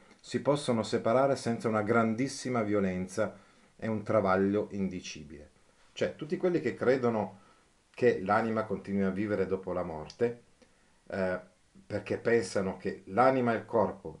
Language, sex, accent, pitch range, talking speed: Italian, male, native, 95-125 Hz, 135 wpm